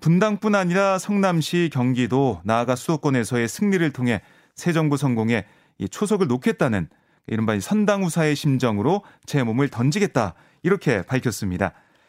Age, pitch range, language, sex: 30-49, 125-175 Hz, Korean, male